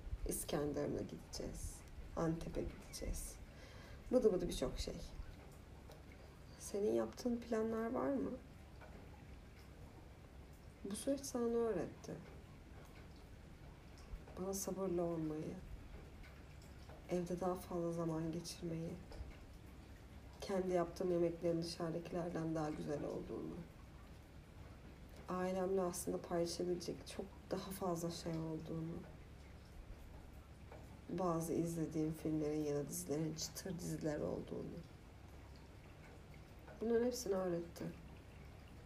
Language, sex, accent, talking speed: Turkish, female, native, 80 wpm